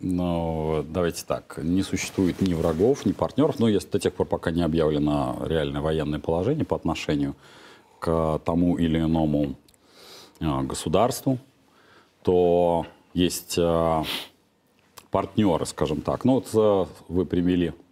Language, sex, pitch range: Russian, male, 75-90 Hz